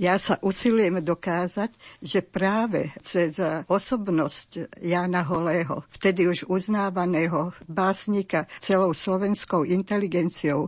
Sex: female